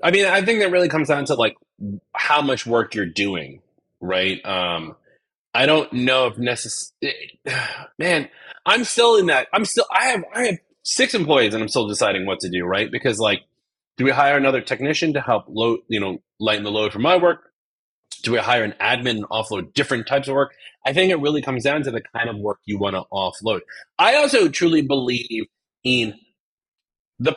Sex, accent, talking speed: male, American, 205 wpm